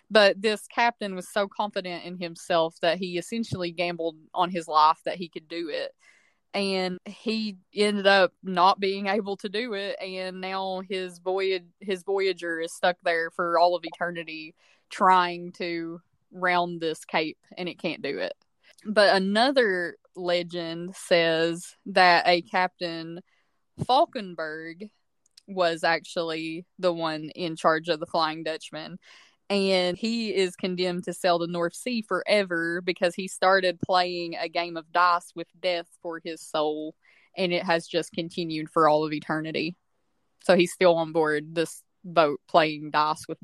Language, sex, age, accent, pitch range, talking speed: English, female, 20-39, American, 170-195 Hz, 155 wpm